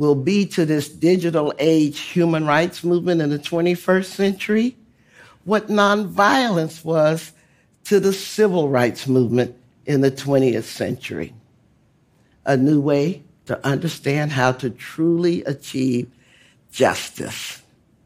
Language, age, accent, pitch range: Korean, 60-79, American, 135-185 Hz